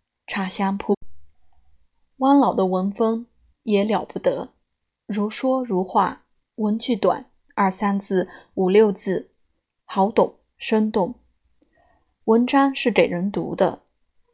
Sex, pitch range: female, 185-230 Hz